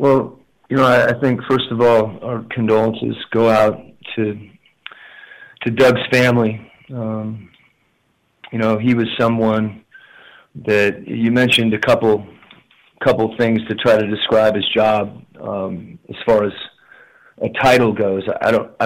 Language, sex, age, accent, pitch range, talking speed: English, male, 40-59, American, 105-125 Hz, 140 wpm